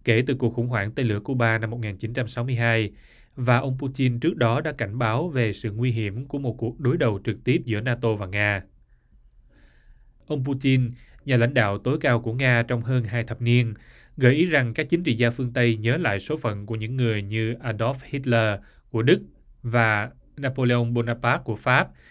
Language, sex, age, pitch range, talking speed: Vietnamese, male, 20-39, 110-125 Hz, 200 wpm